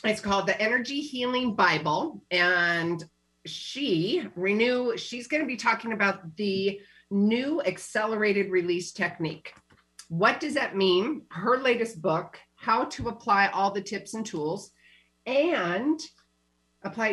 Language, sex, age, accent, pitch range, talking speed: English, female, 40-59, American, 170-220 Hz, 130 wpm